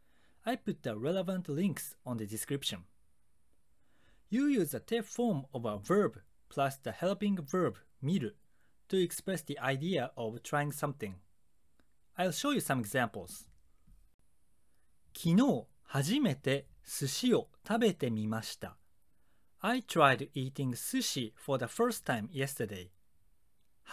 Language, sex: Japanese, male